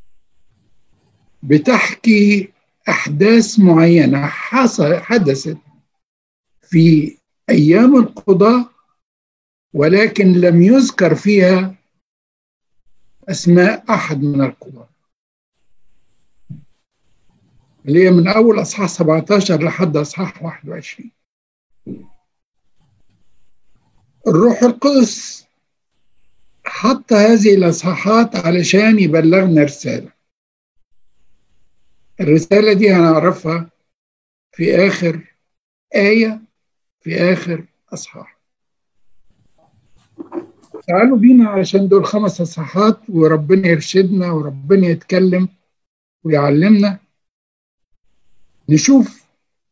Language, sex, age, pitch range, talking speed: Arabic, male, 60-79, 155-210 Hz, 65 wpm